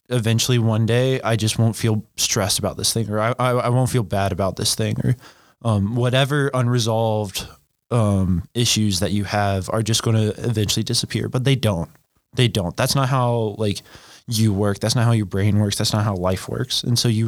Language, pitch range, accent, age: English, 105-125 Hz, American, 20-39